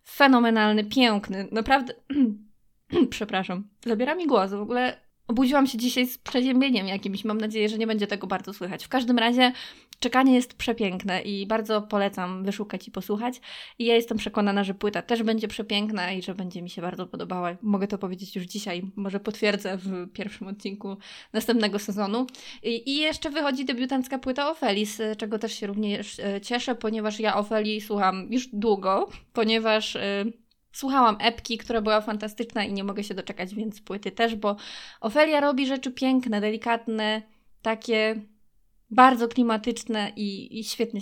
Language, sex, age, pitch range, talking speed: Polish, female, 20-39, 200-250 Hz, 160 wpm